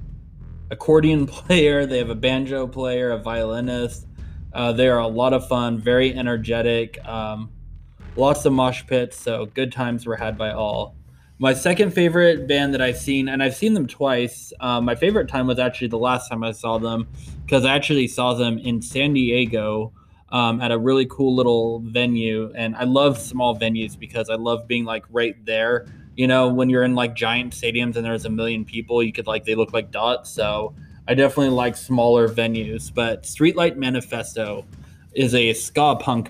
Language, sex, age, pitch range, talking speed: English, male, 20-39, 115-130 Hz, 190 wpm